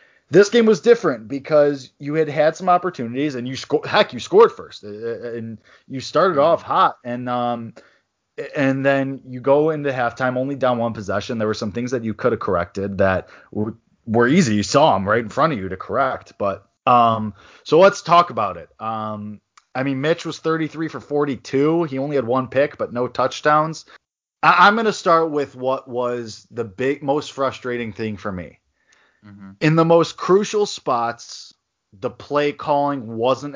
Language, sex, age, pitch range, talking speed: English, male, 20-39, 110-140 Hz, 190 wpm